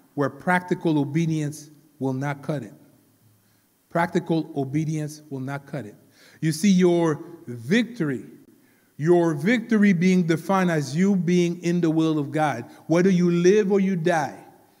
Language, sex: English, male